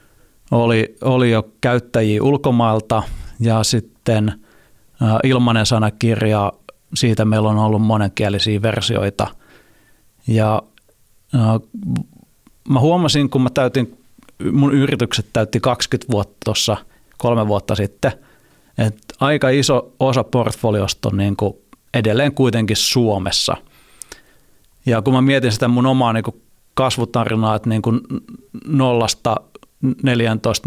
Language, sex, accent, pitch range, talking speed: Finnish, male, native, 110-125 Hz, 115 wpm